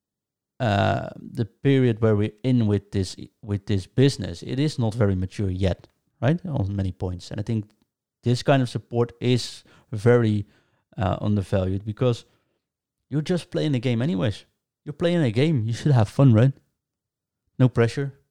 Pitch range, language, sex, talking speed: 100-125 Hz, English, male, 165 wpm